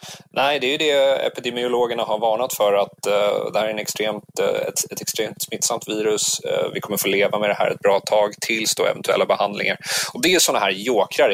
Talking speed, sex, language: 215 wpm, male, Swedish